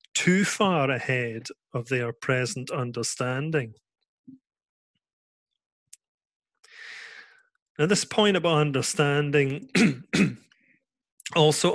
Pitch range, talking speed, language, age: 130-160 Hz, 65 wpm, English, 30-49